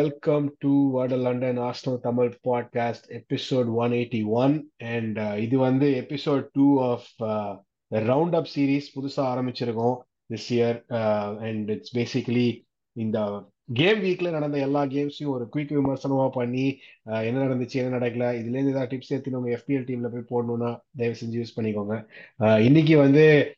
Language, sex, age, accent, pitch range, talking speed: Tamil, male, 20-39, native, 115-140 Hz, 160 wpm